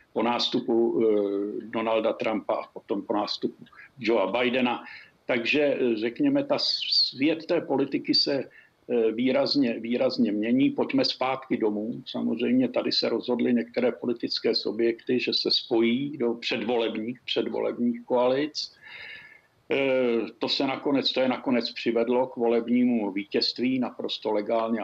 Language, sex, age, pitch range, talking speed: Czech, male, 50-69, 115-140 Hz, 110 wpm